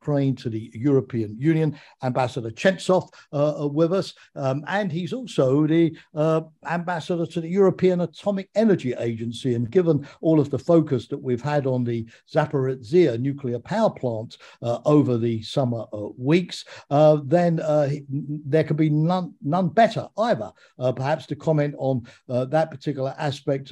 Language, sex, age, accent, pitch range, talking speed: English, male, 50-69, British, 125-160 Hz, 155 wpm